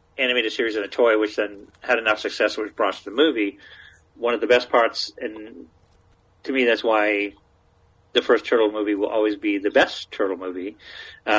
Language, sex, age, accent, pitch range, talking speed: English, male, 40-59, American, 95-125 Hz, 190 wpm